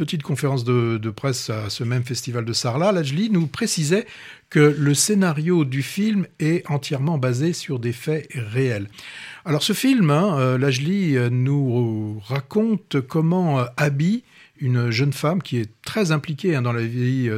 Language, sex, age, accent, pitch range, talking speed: French, male, 60-79, French, 125-175 Hz, 155 wpm